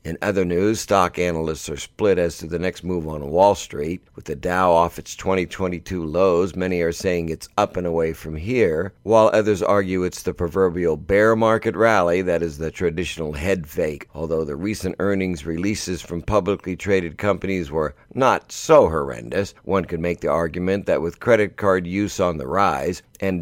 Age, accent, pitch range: 60-79, American, 80-95 Hz